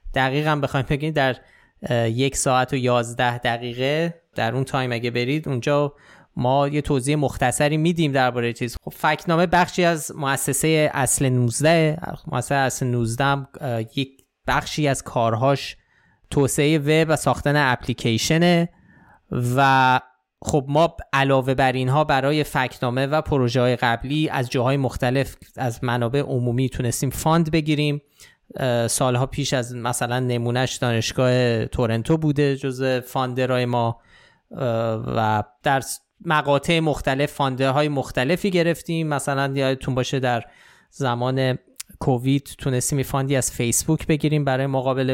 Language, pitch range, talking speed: Persian, 125-145 Hz, 125 wpm